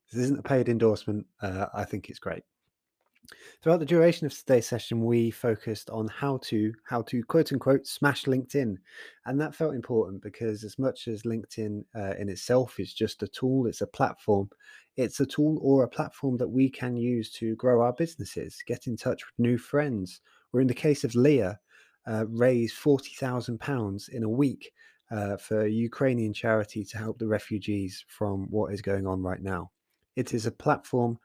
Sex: male